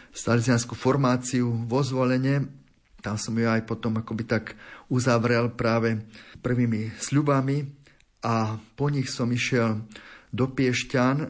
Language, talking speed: Slovak, 115 wpm